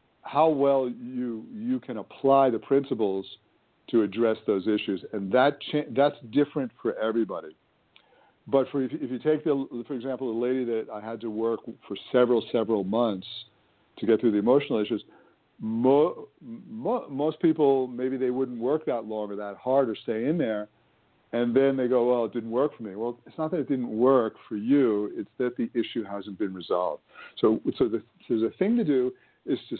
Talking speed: 195 wpm